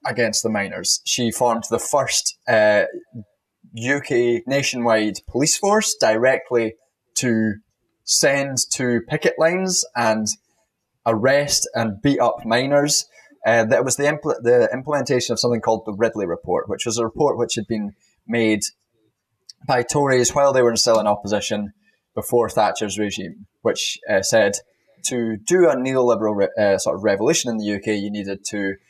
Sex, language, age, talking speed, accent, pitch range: male, English, 20-39, 155 wpm, British, 105-130 Hz